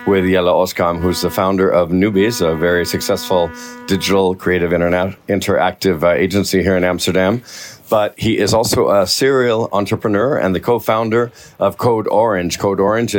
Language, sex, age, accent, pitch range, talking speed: English, male, 50-69, American, 95-110 Hz, 155 wpm